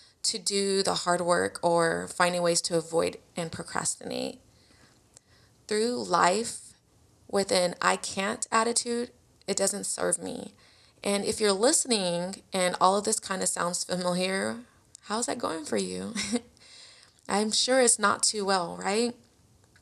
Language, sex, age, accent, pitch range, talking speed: English, female, 20-39, American, 175-210 Hz, 140 wpm